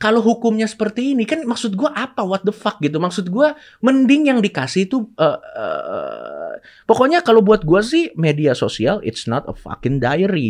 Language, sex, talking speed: Indonesian, male, 185 wpm